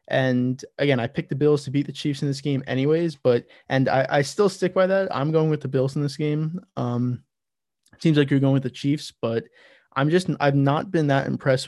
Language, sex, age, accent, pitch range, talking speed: English, male, 20-39, American, 130-150 Hz, 235 wpm